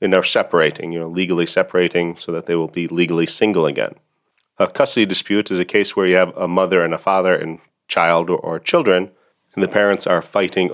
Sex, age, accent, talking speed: male, 40-59, American, 210 wpm